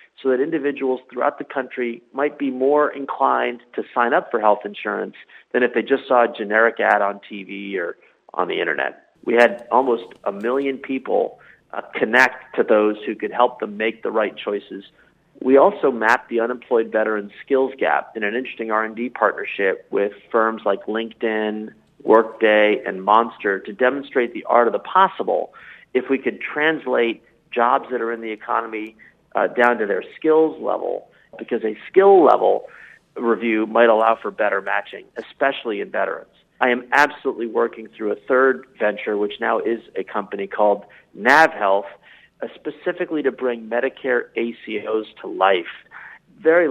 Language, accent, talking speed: English, American, 165 wpm